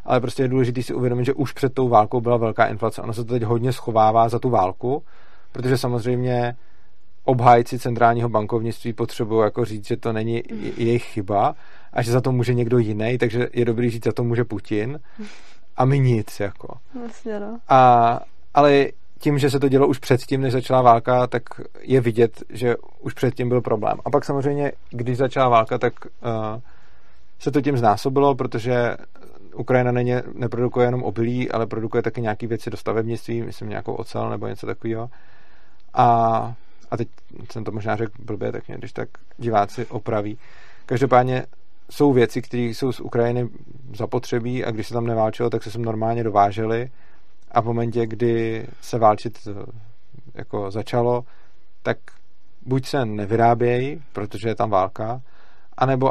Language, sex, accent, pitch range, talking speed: Czech, male, native, 115-125 Hz, 165 wpm